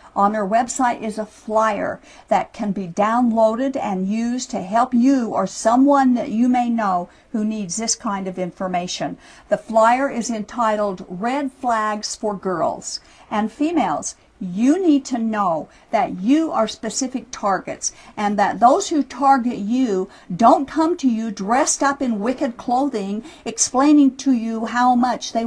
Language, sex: English, female